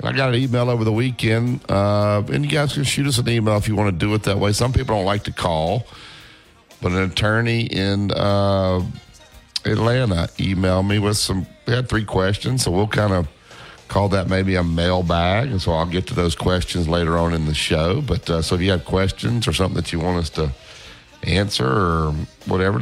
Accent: American